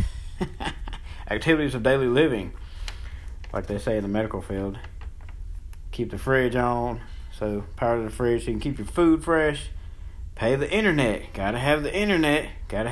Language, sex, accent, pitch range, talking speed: English, male, American, 80-130 Hz, 160 wpm